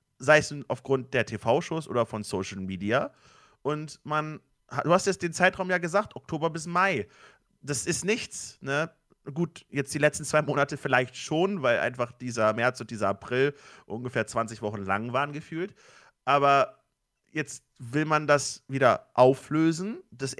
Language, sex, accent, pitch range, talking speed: German, male, German, 125-155 Hz, 160 wpm